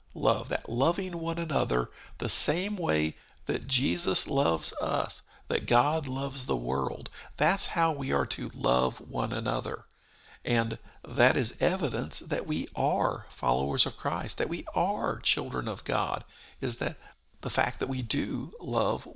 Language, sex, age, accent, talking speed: English, male, 50-69, American, 155 wpm